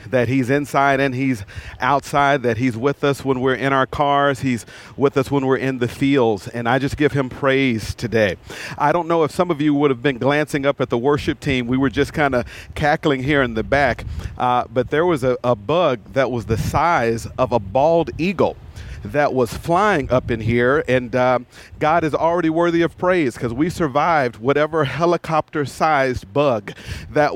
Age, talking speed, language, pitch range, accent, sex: 40-59, 200 wpm, English, 125-155 Hz, American, male